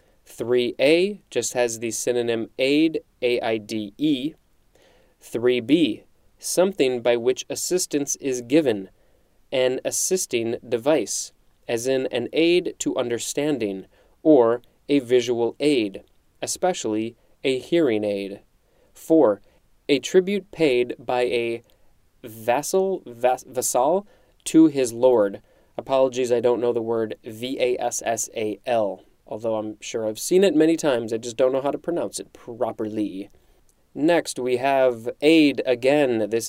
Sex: male